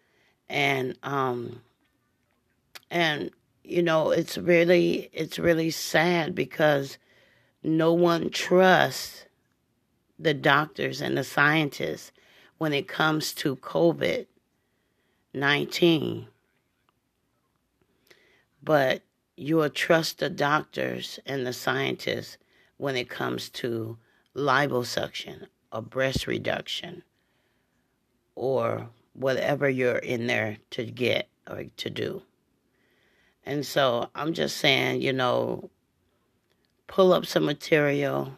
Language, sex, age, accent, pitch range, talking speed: English, female, 40-59, American, 120-160 Hz, 95 wpm